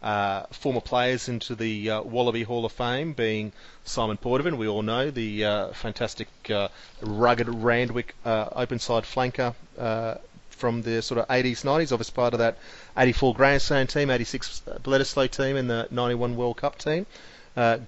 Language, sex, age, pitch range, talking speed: English, male, 30-49, 110-130 Hz, 170 wpm